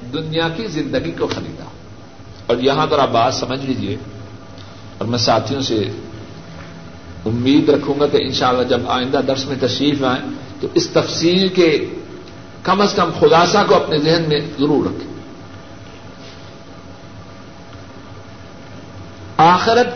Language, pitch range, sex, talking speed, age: Urdu, 95-145 Hz, male, 125 wpm, 60-79